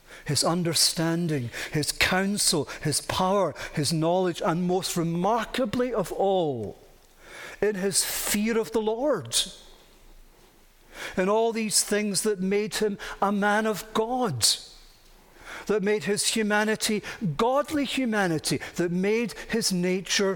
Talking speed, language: 120 wpm, English